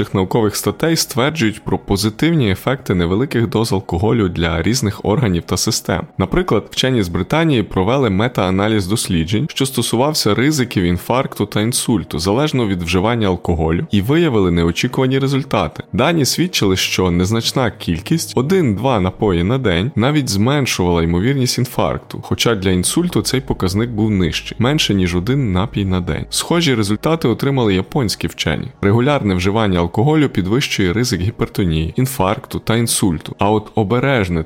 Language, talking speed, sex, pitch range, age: Ukrainian, 135 wpm, male, 95-130 Hz, 20-39